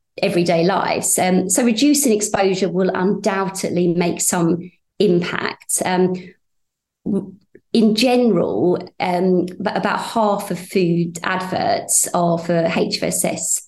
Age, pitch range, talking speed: 30-49, 175-205 Hz, 110 wpm